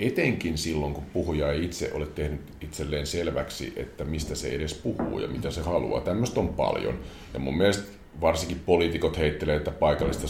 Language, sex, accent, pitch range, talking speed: Finnish, male, native, 75-85 Hz, 175 wpm